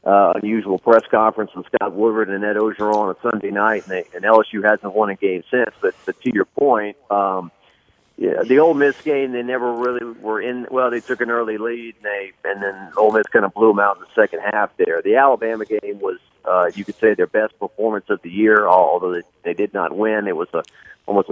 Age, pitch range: 40-59, 100-120 Hz